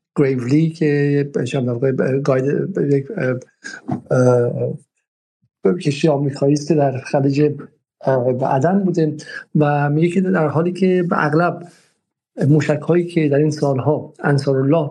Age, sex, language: 50-69, male, Persian